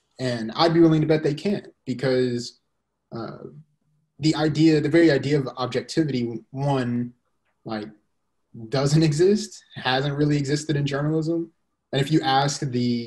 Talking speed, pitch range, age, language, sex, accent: 140 wpm, 115-145 Hz, 20-39, English, male, American